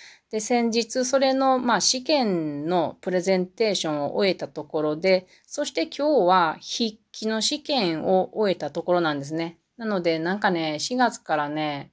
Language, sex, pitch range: Japanese, female, 160-220 Hz